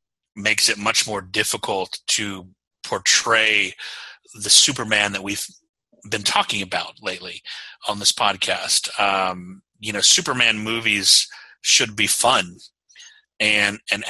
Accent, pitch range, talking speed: American, 100-115 Hz, 120 wpm